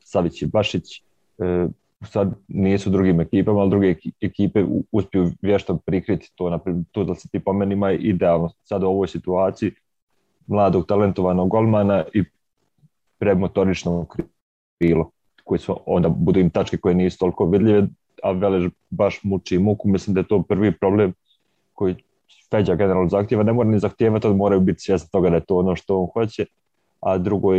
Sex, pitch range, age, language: male, 90-100 Hz, 30-49, English